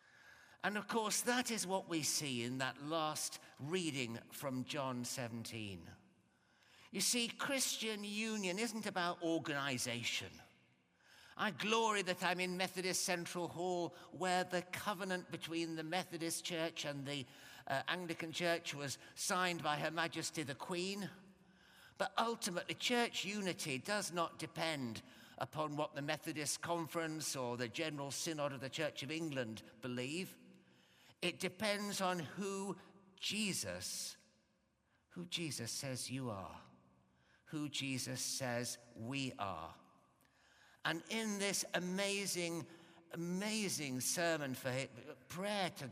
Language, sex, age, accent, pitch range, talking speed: English, male, 50-69, British, 130-185 Hz, 125 wpm